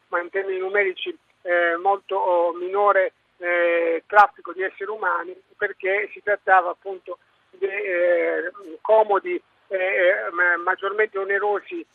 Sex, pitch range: male, 180-215 Hz